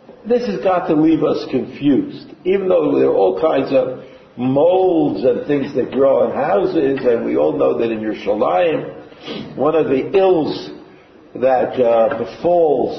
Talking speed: 165 wpm